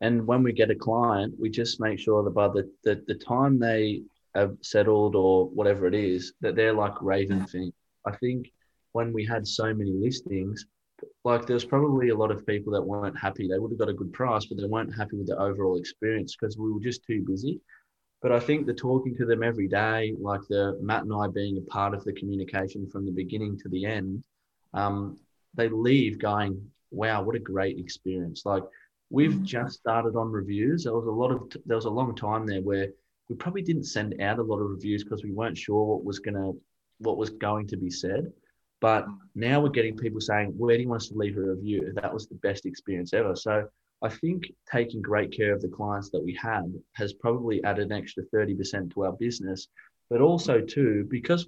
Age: 20-39